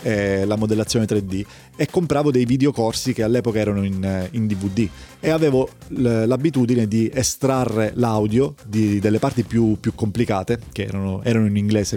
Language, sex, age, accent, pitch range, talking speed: Italian, male, 30-49, native, 105-125 Hz, 155 wpm